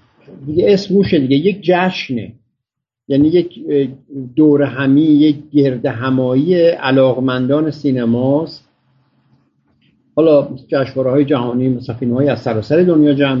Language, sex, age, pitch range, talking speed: Persian, male, 50-69, 130-160 Hz, 110 wpm